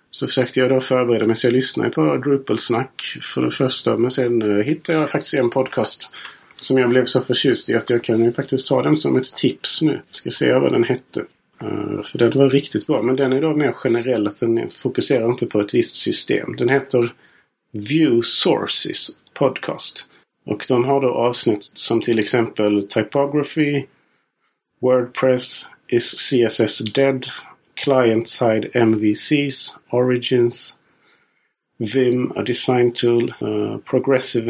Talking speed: 150 wpm